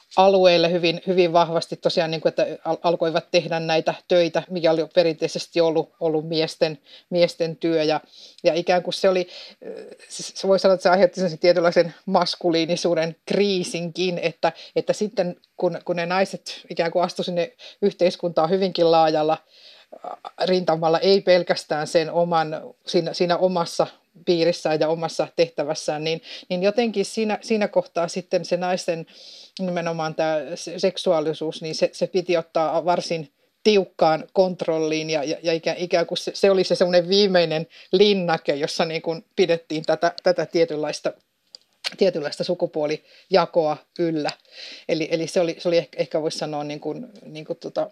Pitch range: 165-185 Hz